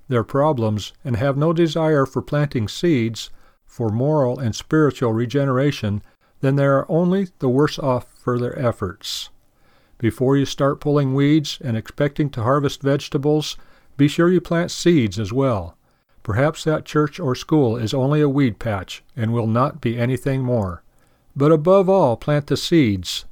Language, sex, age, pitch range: English, male, 50-69, 120-150 Hz